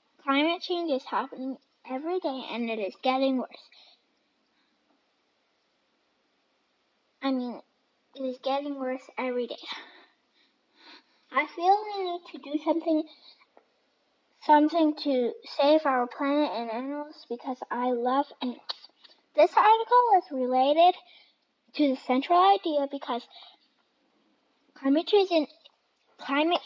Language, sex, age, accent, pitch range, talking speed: English, female, 10-29, American, 260-315 Hz, 105 wpm